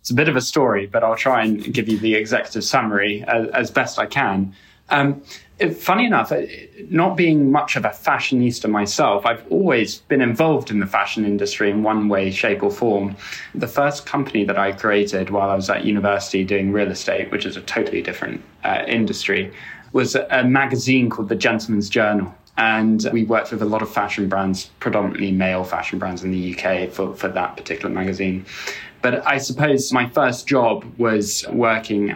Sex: male